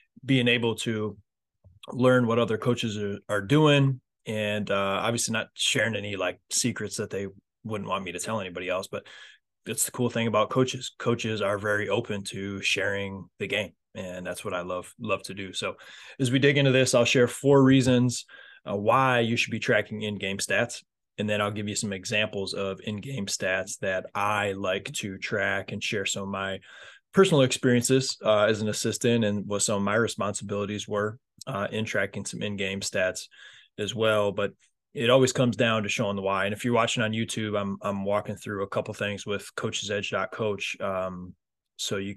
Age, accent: 20-39, American